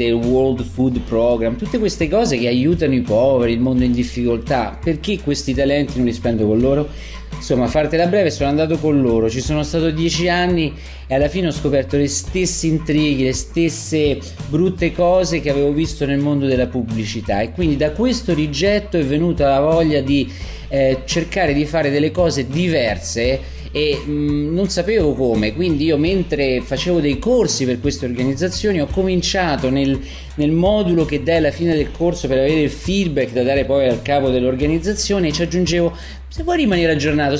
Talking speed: 185 wpm